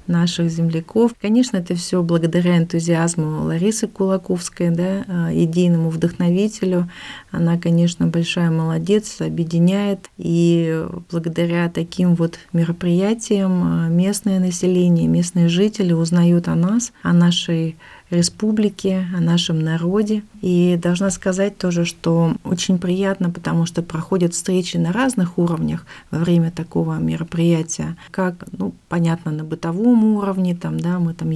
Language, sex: Russian, female